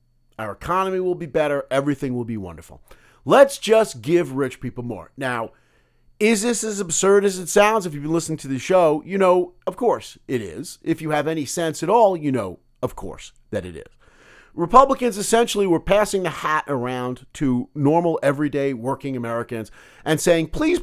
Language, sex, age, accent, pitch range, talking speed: English, male, 50-69, American, 135-225 Hz, 185 wpm